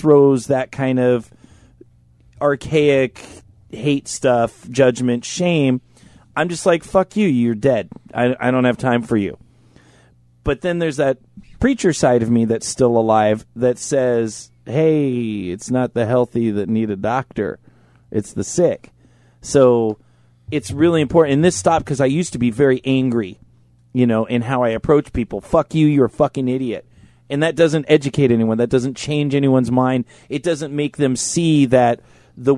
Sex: male